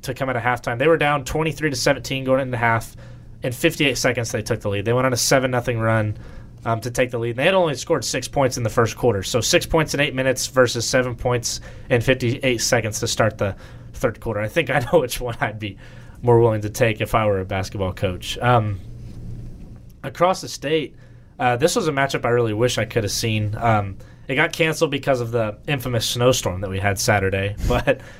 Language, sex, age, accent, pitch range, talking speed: English, male, 20-39, American, 110-130 Hz, 230 wpm